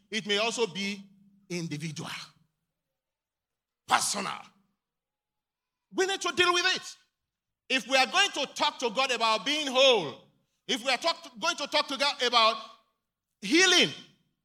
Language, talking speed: English, 140 wpm